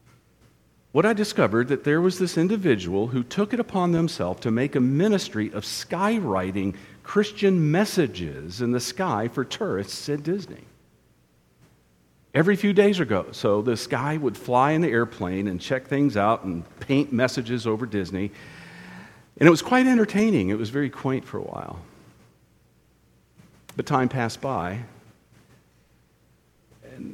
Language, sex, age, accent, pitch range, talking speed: English, male, 50-69, American, 105-145 Hz, 145 wpm